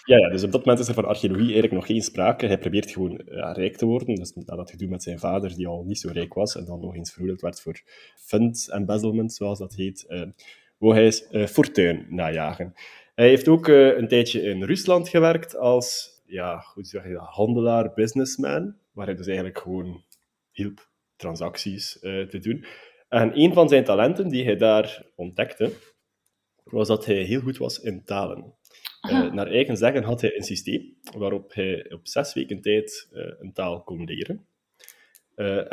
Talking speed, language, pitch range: 195 wpm, Dutch, 95-125 Hz